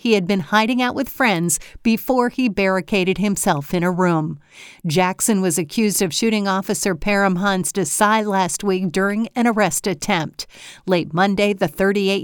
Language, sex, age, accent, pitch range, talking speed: English, female, 50-69, American, 180-225 Hz, 160 wpm